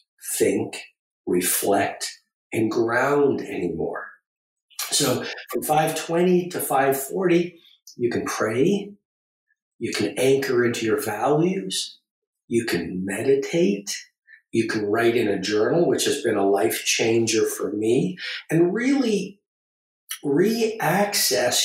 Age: 50-69